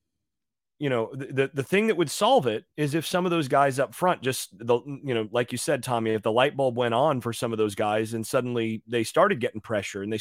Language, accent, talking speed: English, American, 260 wpm